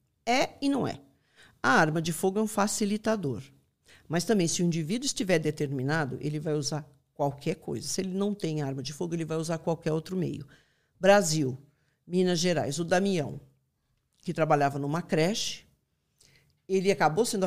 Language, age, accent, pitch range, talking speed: Portuguese, 50-69, Brazilian, 150-195 Hz, 165 wpm